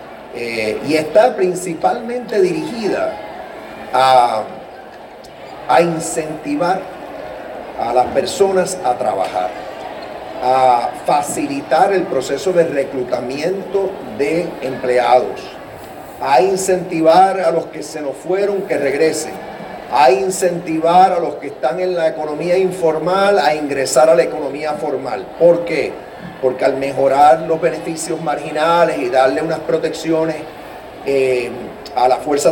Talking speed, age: 115 wpm, 40-59